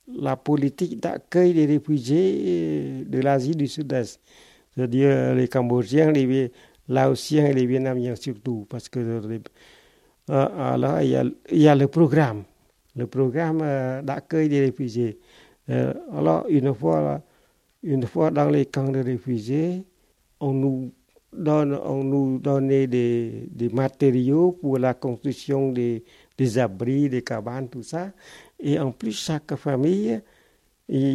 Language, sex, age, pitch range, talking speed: French, male, 60-79, 120-145 Hz, 140 wpm